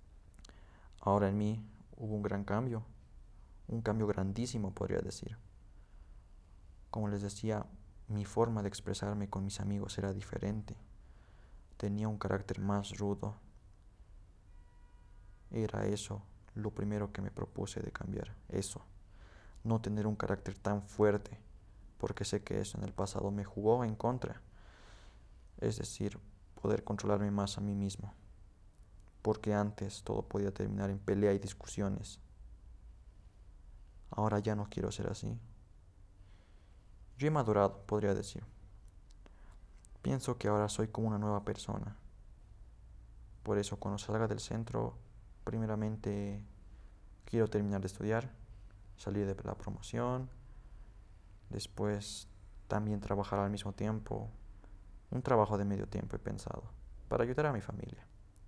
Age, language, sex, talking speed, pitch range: 20-39, Spanish, male, 130 wpm, 95-105 Hz